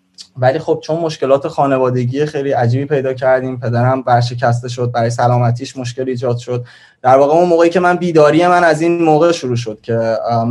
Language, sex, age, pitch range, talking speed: Persian, male, 20-39, 130-175 Hz, 185 wpm